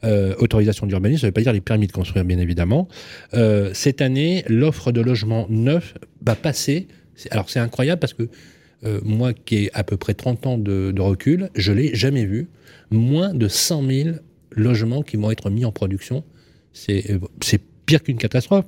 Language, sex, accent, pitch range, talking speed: French, male, French, 105-135 Hz, 195 wpm